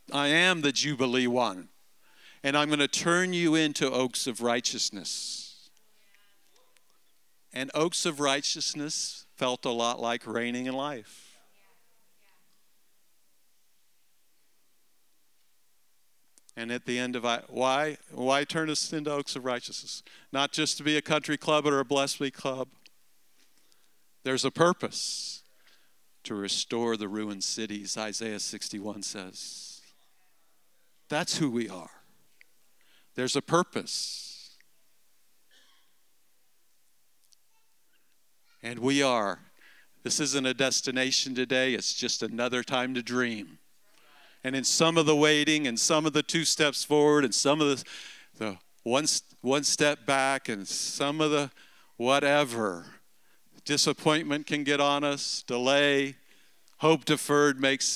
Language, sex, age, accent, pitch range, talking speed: English, male, 50-69, American, 125-150 Hz, 125 wpm